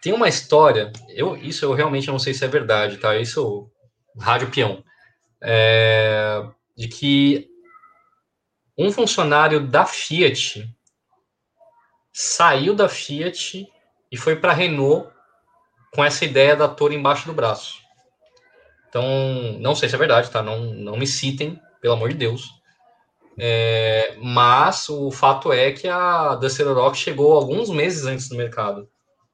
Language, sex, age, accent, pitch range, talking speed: Portuguese, male, 20-39, Brazilian, 120-185 Hz, 140 wpm